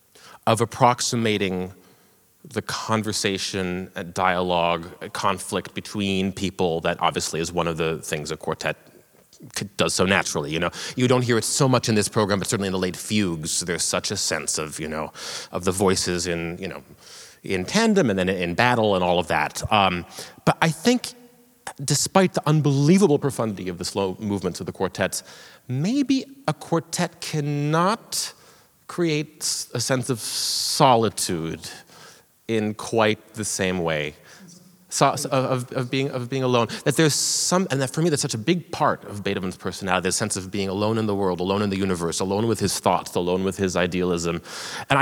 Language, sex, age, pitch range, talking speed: English, male, 30-49, 90-135 Hz, 180 wpm